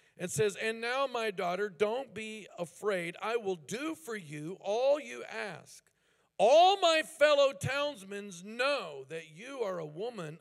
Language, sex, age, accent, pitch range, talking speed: English, male, 50-69, American, 160-235 Hz, 155 wpm